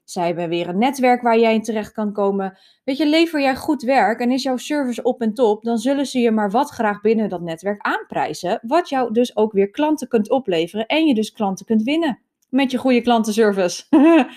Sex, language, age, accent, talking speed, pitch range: female, Dutch, 20-39, Dutch, 220 wpm, 200-260 Hz